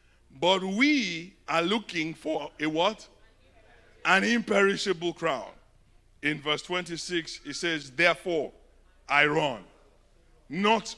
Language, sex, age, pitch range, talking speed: English, male, 50-69, 140-190 Hz, 105 wpm